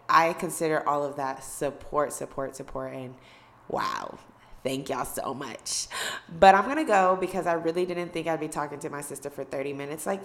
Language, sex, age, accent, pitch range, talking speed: English, female, 20-39, American, 145-195 Hz, 195 wpm